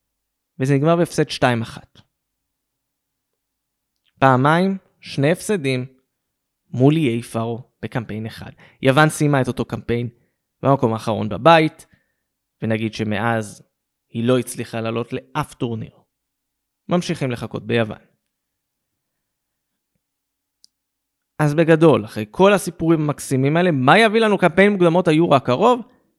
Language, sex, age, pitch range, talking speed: Hebrew, male, 20-39, 120-165 Hz, 105 wpm